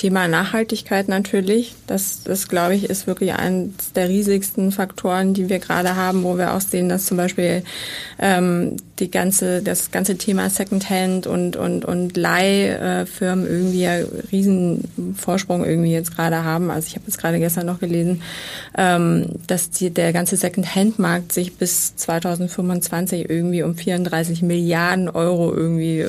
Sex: female